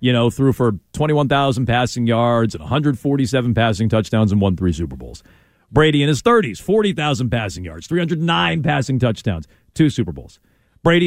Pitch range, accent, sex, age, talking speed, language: 120-160 Hz, American, male, 40-59, 165 wpm, English